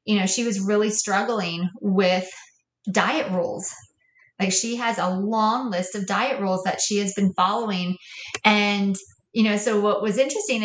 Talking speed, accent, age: 170 wpm, American, 30-49